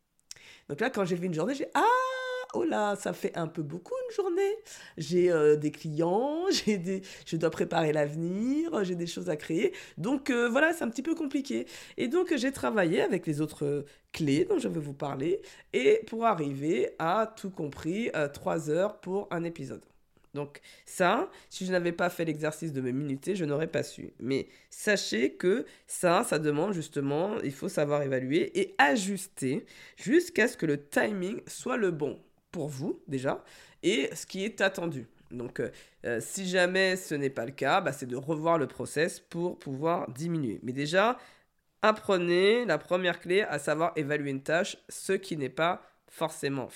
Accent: French